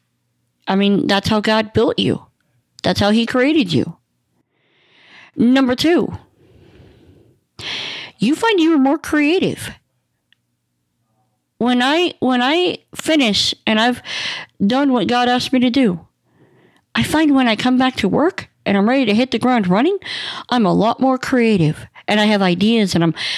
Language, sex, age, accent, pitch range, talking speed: English, female, 50-69, American, 170-235 Hz, 155 wpm